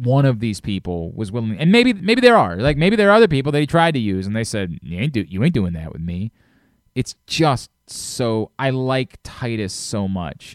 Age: 20-39